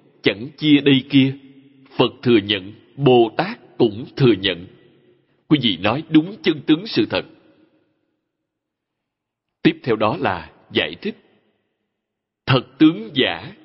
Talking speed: 125 wpm